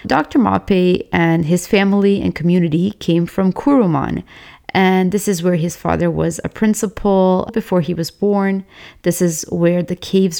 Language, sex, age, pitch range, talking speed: English, female, 30-49, 170-200 Hz, 160 wpm